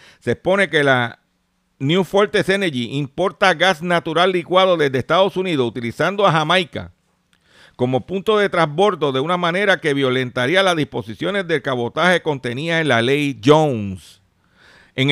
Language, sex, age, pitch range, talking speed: Spanish, male, 50-69, 130-175 Hz, 145 wpm